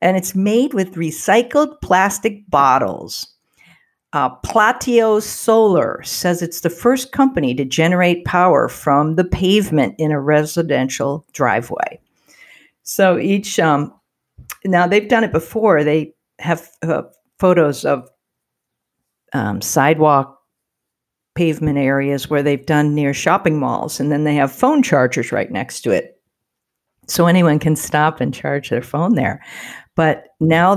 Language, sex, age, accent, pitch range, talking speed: English, female, 50-69, American, 150-185 Hz, 135 wpm